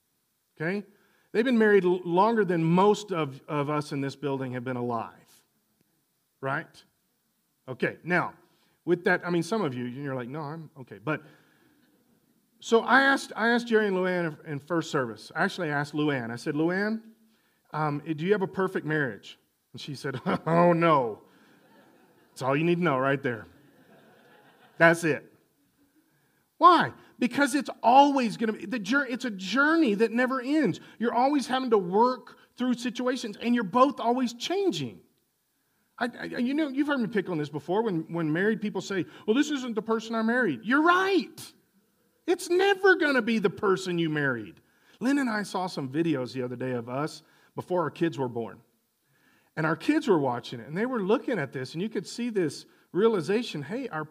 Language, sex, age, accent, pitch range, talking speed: English, male, 40-59, American, 155-245 Hz, 190 wpm